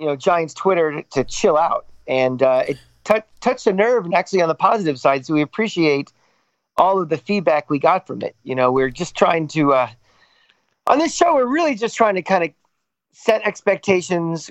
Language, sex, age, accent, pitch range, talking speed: English, male, 40-59, American, 140-175 Hz, 205 wpm